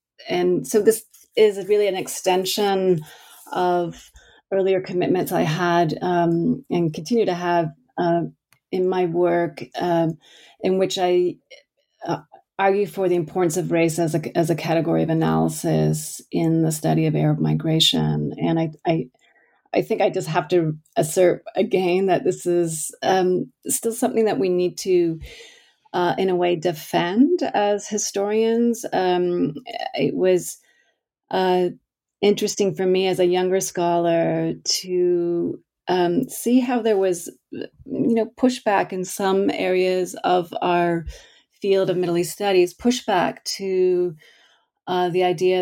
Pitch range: 170-195 Hz